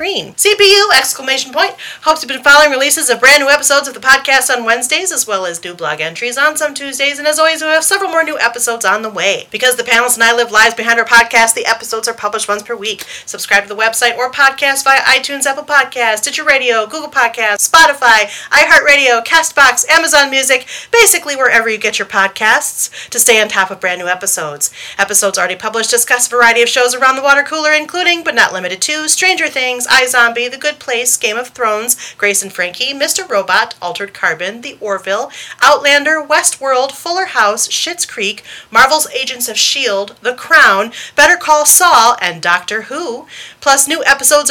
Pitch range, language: 220-300 Hz, English